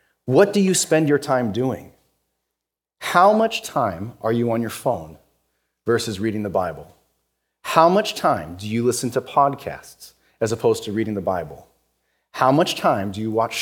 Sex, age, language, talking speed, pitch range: male, 30-49, English, 170 wpm, 110-155 Hz